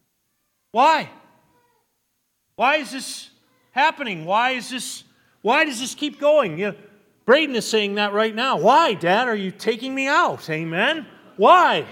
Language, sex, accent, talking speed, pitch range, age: English, male, American, 150 wpm, 175-240 Hz, 40-59